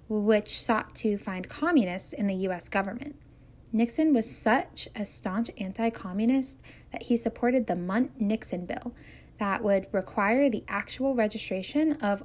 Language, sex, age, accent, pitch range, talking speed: English, female, 10-29, American, 195-250 Hz, 135 wpm